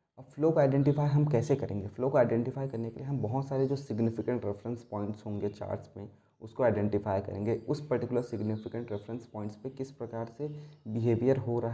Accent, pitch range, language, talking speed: native, 115-140 Hz, Hindi, 190 wpm